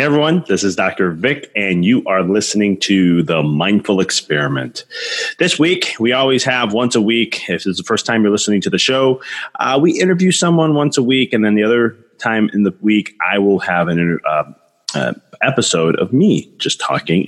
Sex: male